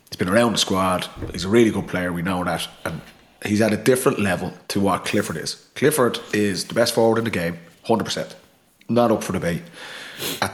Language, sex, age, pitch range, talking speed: English, male, 30-49, 95-115 Hz, 215 wpm